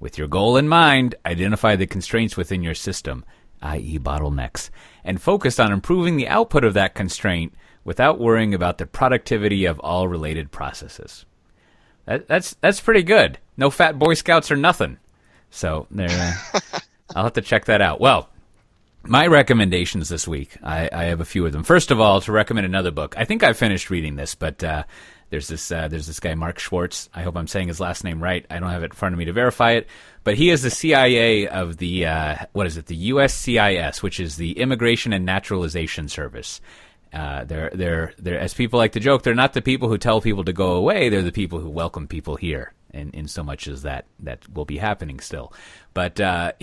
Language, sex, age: English, male, 30-49